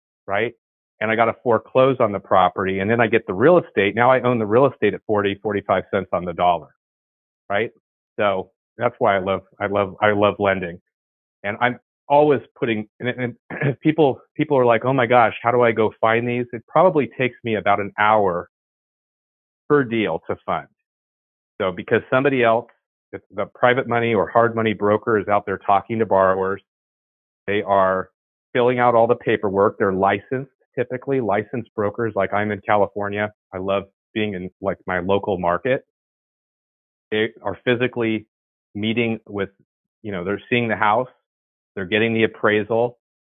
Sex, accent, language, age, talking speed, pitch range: male, American, English, 30-49, 175 wpm, 100-120 Hz